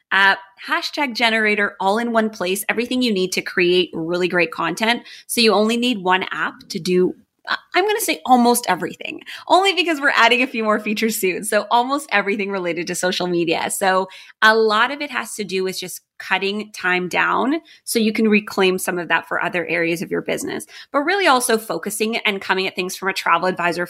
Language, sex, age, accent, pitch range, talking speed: English, female, 20-39, American, 185-235 Hz, 210 wpm